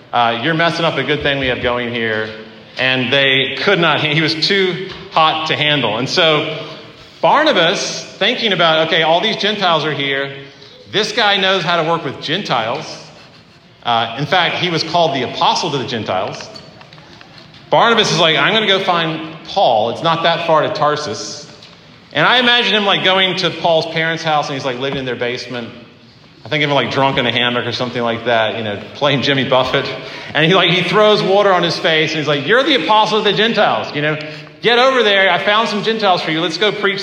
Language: English